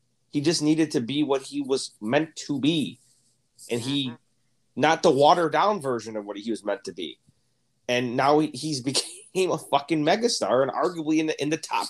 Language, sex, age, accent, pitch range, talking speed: English, male, 30-49, American, 120-160 Hz, 200 wpm